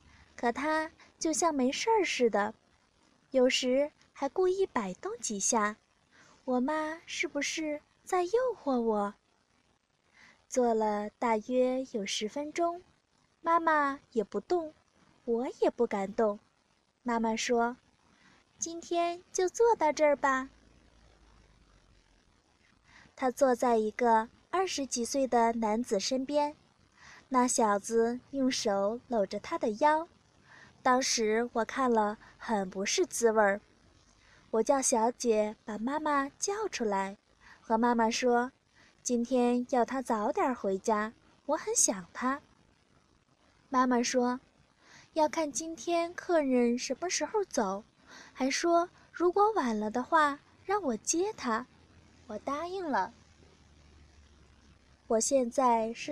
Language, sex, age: Chinese, female, 20-39